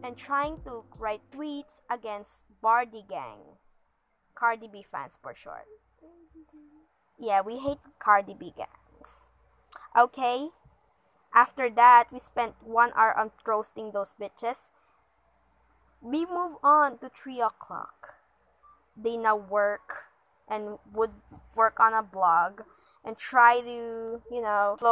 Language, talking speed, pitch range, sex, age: English, 120 wpm, 220-280 Hz, female, 20-39